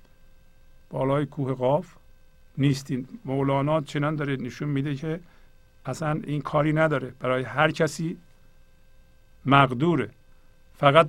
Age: 50-69